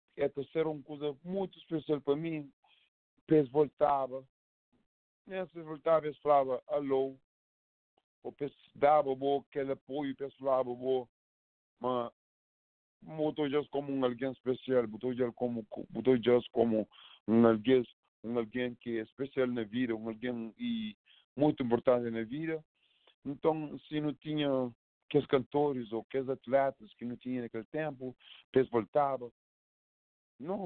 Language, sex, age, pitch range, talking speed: English, male, 50-69, 115-145 Hz, 135 wpm